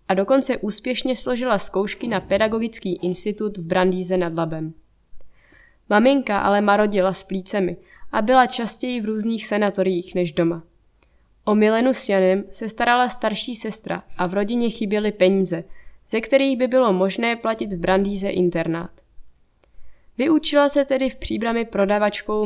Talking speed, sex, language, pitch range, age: 145 wpm, female, Czech, 190-240 Hz, 20-39